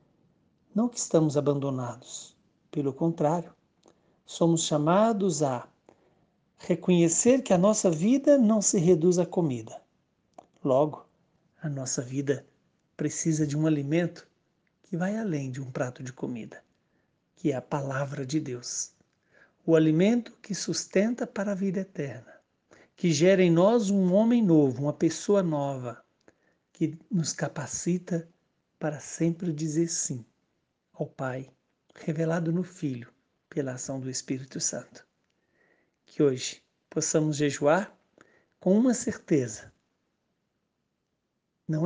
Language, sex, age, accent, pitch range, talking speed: Portuguese, male, 60-79, Brazilian, 145-185 Hz, 120 wpm